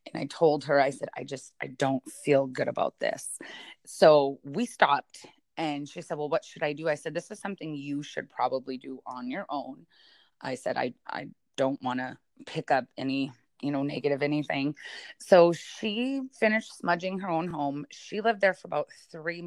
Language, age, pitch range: English, 30-49, 135-165 Hz